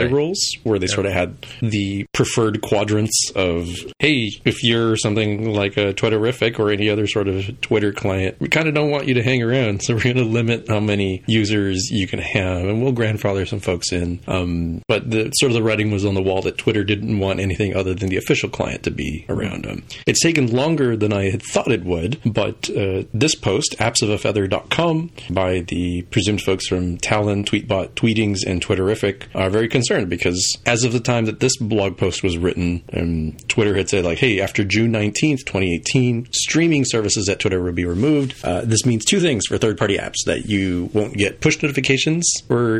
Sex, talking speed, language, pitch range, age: male, 205 wpm, English, 95-120 Hz, 30-49